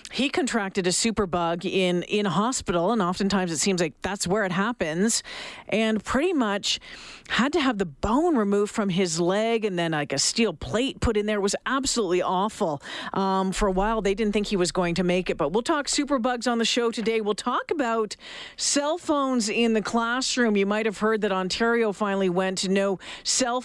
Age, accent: 40-59, American